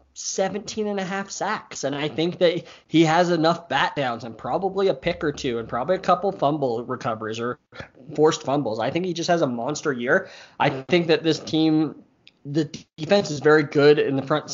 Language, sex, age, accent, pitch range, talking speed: English, male, 20-39, American, 125-165 Hz, 205 wpm